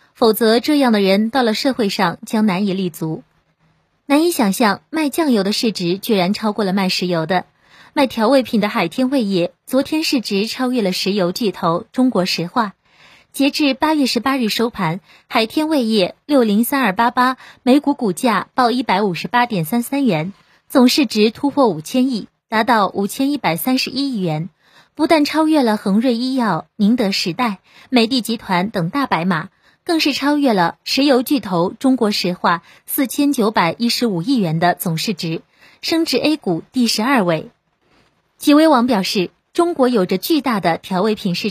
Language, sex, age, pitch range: Chinese, female, 20-39, 190-260 Hz